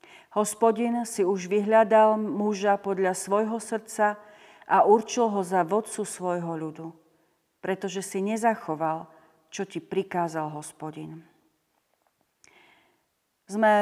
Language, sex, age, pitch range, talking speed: Slovak, female, 40-59, 180-225 Hz, 100 wpm